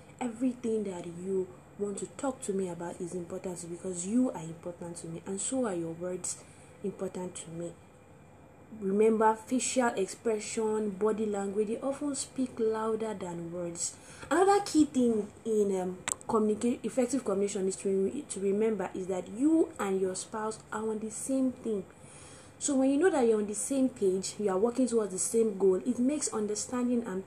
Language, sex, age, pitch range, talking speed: English, female, 20-39, 195-250 Hz, 175 wpm